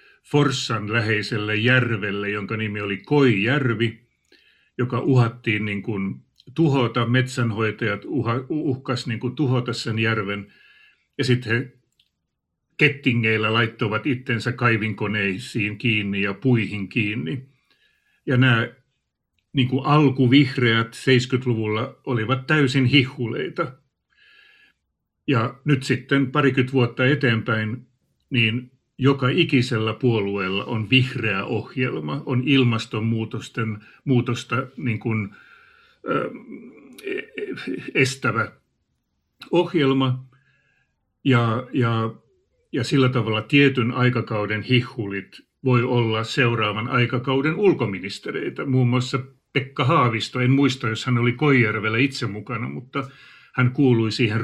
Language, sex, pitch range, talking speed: Finnish, male, 110-135 Hz, 95 wpm